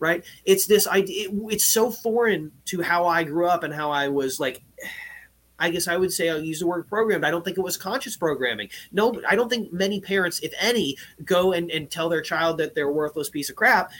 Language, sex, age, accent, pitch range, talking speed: English, male, 30-49, American, 160-205 Hz, 235 wpm